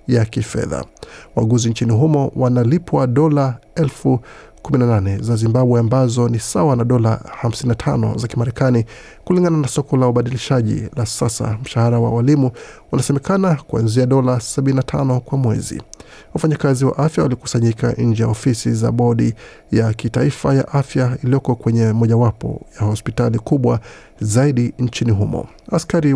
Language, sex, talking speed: Swahili, male, 130 wpm